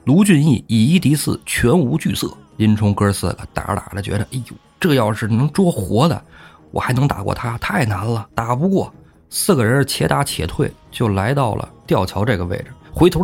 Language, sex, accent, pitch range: Chinese, male, native, 105-155 Hz